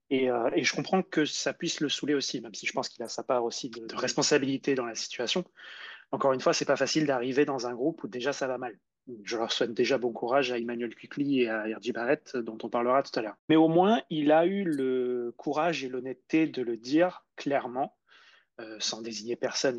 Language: French